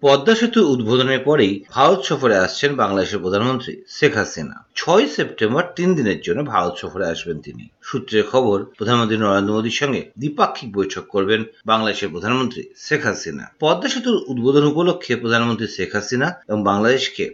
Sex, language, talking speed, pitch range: male, Bengali, 45 wpm, 110-165 Hz